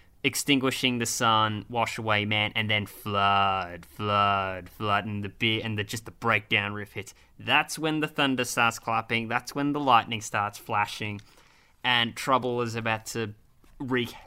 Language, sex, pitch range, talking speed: English, male, 100-120 Hz, 160 wpm